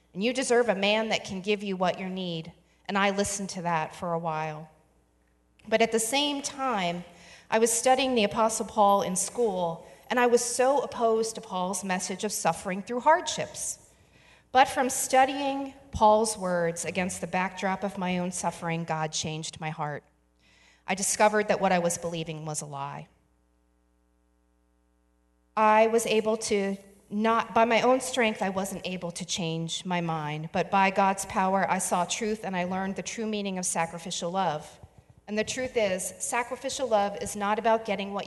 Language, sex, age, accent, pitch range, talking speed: English, female, 40-59, American, 170-215 Hz, 180 wpm